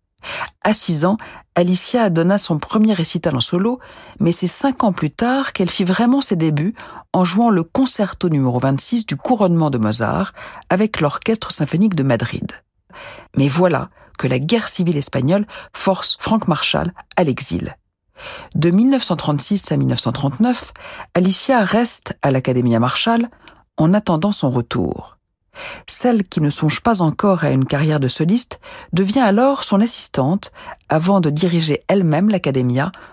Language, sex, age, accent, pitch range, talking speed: French, female, 50-69, French, 150-215 Hz, 145 wpm